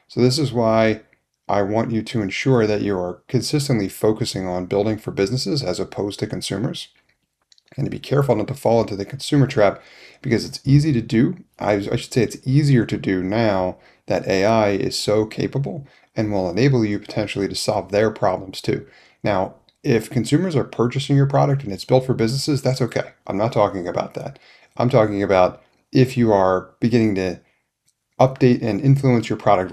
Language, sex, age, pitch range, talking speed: English, male, 30-49, 100-125 Hz, 190 wpm